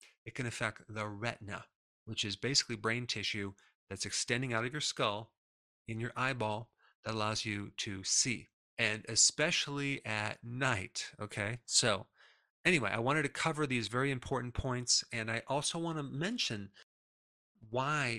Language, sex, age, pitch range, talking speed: English, male, 40-59, 105-125 Hz, 150 wpm